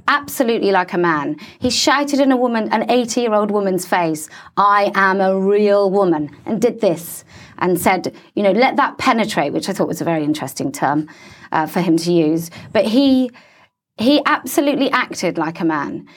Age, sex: 30-49, female